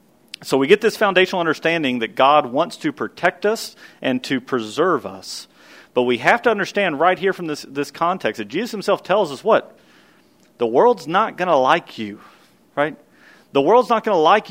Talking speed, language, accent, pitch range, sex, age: 195 wpm, English, American, 130-180 Hz, male, 40-59